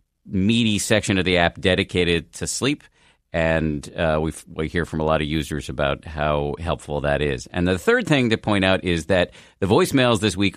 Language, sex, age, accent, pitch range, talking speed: English, male, 50-69, American, 80-95 Hz, 200 wpm